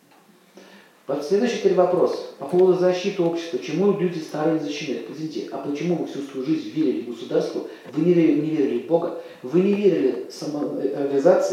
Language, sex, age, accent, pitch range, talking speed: Russian, male, 40-59, native, 165-245 Hz, 160 wpm